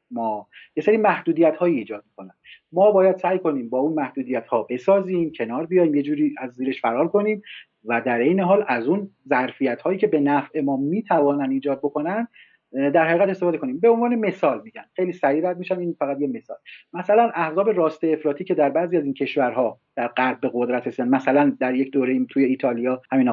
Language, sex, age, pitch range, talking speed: Persian, male, 40-59, 130-190 Hz, 195 wpm